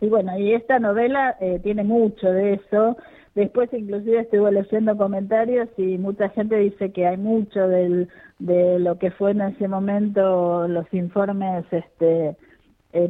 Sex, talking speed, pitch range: female, 155 wpm, 185-230 Hz